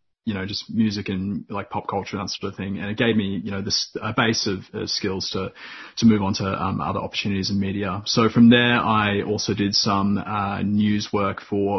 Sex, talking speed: male, 235 wpm